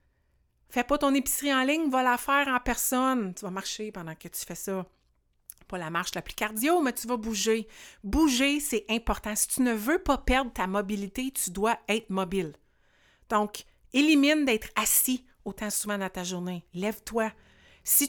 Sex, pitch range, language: female, 185-255 Hz, French